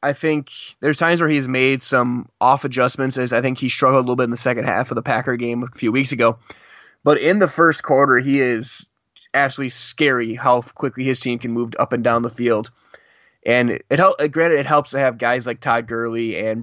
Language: English